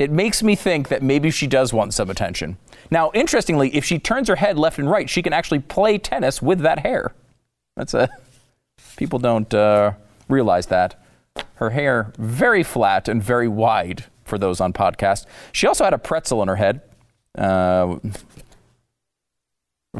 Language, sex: English, male